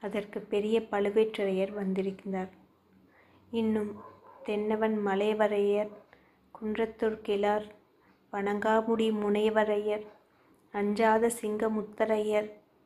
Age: 20-39